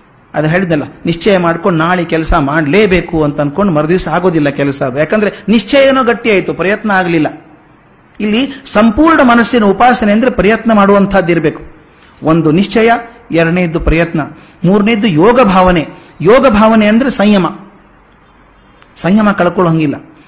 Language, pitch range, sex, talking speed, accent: Kannada, 165-225 Hz, male, 110 wpm, native